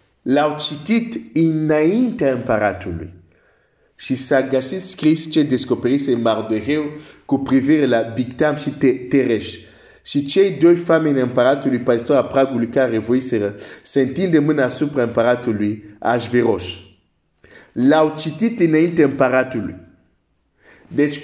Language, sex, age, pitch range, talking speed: Romanian, male, 50-69, 105-150 Hz, 120 wpm